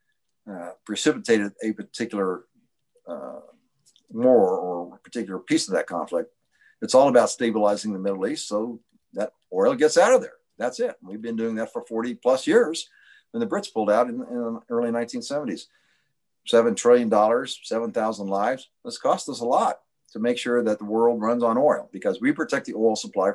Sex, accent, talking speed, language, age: male, American, 180 wpm, English, 60-79